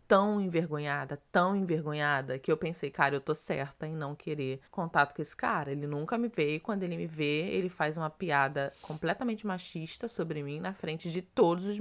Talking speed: 205 wpm